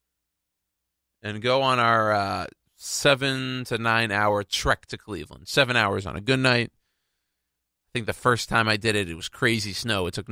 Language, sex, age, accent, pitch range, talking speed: English, male, 30-49, American, 95-125 Hz, 185 wpm